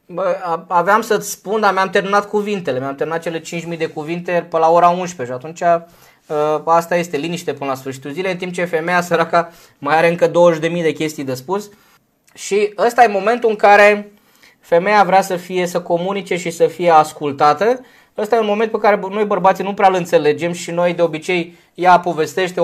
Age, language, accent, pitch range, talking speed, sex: 20-39, Romanian, native, 155-200 Hz, 195 wpm, male